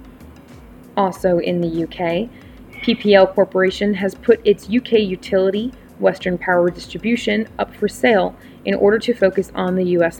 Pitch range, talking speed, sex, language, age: 185-215 Hz, 140 wpm, female, English, 20-39